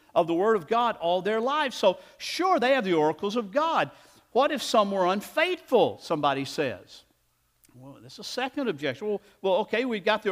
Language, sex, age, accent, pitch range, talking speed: English, male, 50-69, American, 175-285 Hz, 200 wpm